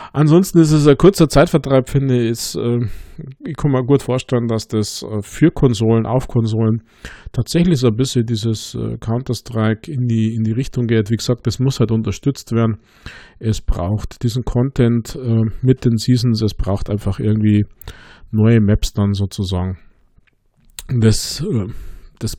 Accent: German